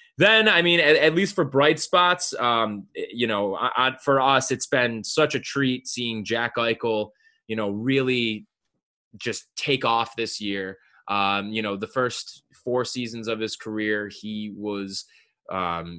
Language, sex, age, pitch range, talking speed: English, male, 20-39, 100-125 Hz, 170 wpm